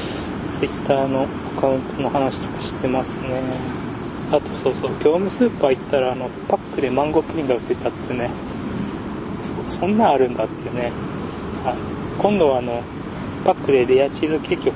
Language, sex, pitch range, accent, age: Japanese, male, 125-160 Hz, native, 20-39